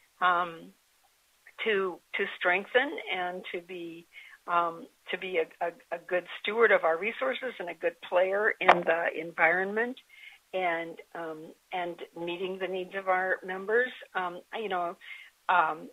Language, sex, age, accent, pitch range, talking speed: English, female, 50-69, American, 175-220 Hz, 145 wpm